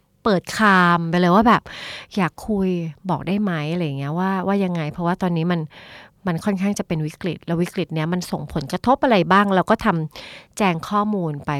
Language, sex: Thai, female